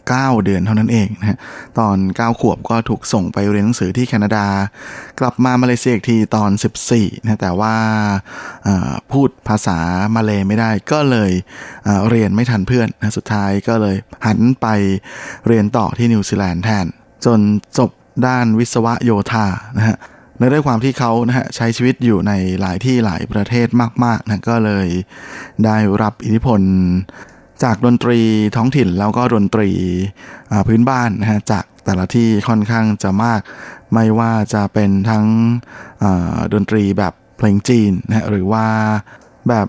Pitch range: 105-120 Hz